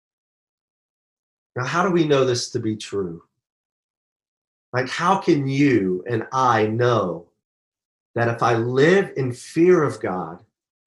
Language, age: English, 40-59